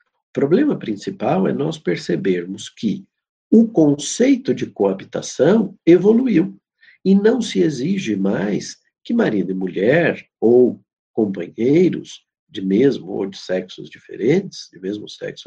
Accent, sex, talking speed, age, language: Brazilian, male, 125 wpm, 50-69, Portuguese